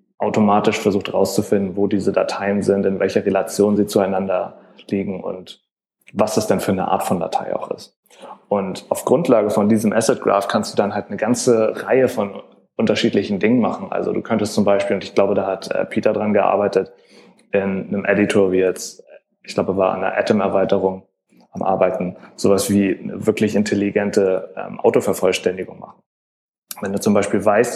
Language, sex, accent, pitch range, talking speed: German, male, German, 100-110 Hz, 175 wpm